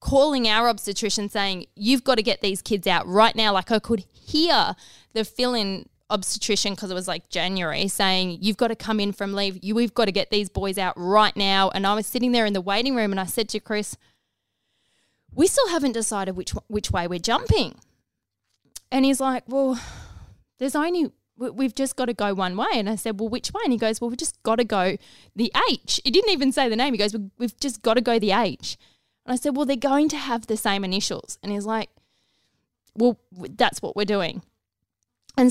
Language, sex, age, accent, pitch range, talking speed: English, female, 20-39, Australian, 200-260 Hz, 220 wpm